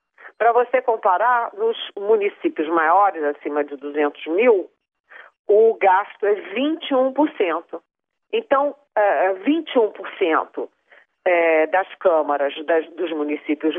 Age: 40-59